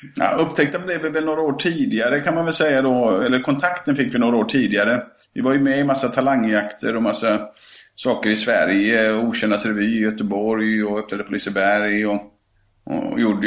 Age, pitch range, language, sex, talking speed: 30-49, 100-120 Hz, Swedish, male, 185 wpm